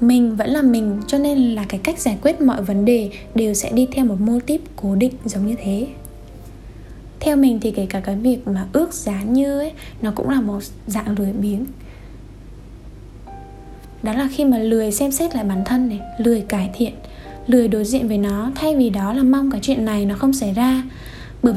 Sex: female